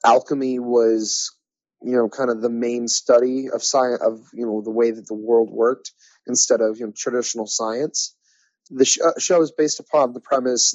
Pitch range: 110-135 Hz